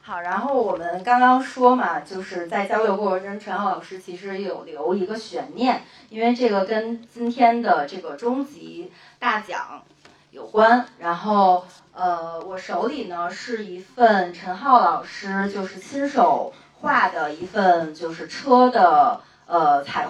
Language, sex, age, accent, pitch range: Chinese, female, 30-49, native, 180-245 Hz